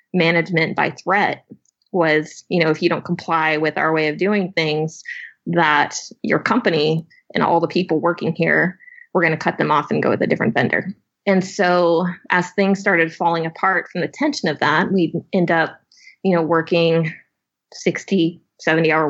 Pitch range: 160-195 Hz